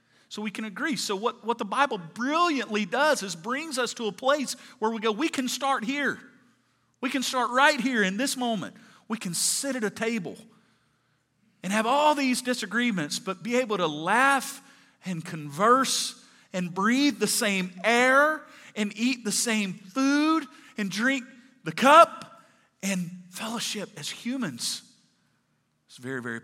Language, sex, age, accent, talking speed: English, male, 40-59, American, 160 wpm